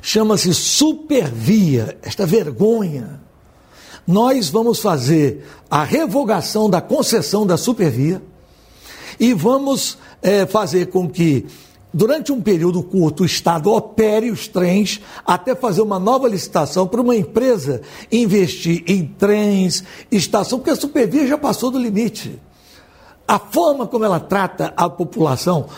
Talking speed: 125 wpm